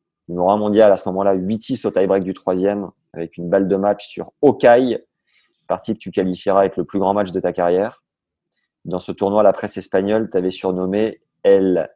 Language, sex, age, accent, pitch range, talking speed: French, male, 20-39, French, 90-110 Hz, 190 wpm